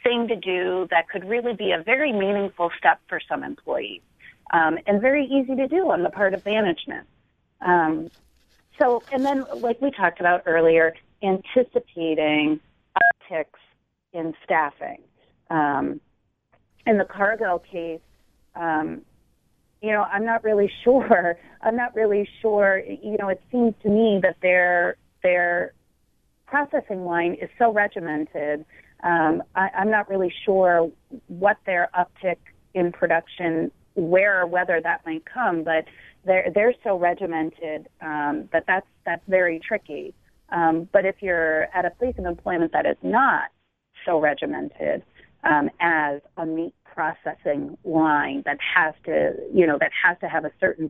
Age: 30-49